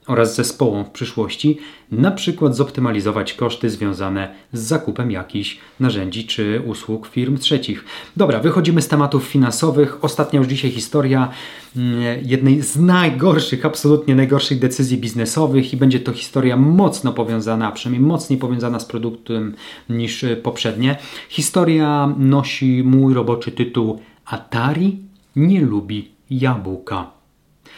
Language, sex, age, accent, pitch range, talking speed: Polish, male, 30-49, native, 115-140 Hz, 120 wpm